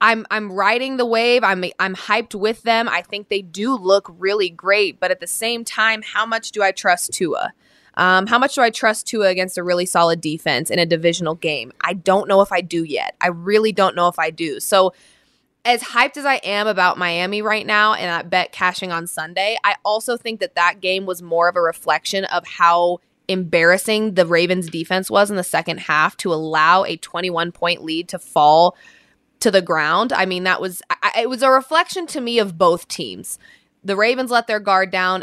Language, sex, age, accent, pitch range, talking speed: English, female, 20-39, American, 175-215 Hz, 215 wpm